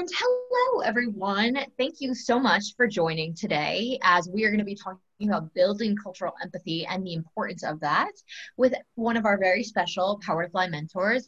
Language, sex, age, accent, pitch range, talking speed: English, female, 20-39, American, 185-255 Hz, 180 wpm